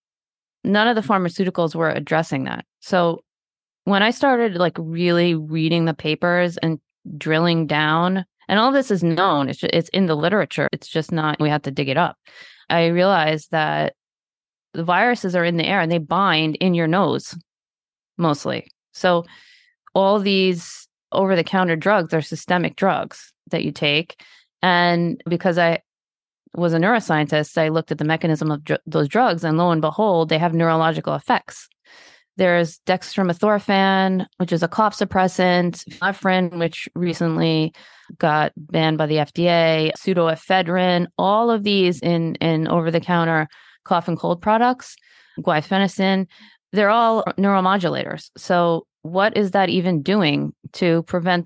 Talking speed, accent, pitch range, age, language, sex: 150 wpm, American, 160-195 Hz, 20-39, English, female